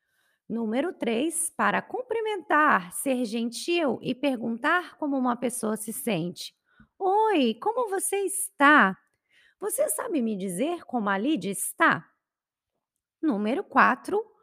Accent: Brazilian